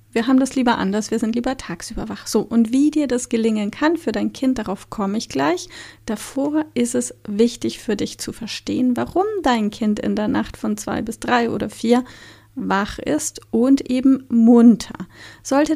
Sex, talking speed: female, 190 wpm